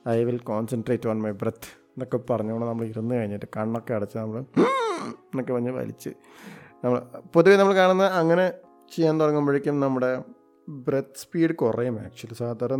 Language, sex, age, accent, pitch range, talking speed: Malayalam, male, 20-39, native, 120-155 Hz, 150 wpm